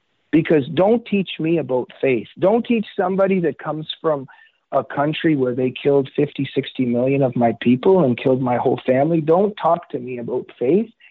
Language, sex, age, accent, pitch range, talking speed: English, male, 50-69, American, 115-150 Hz, 185 wpm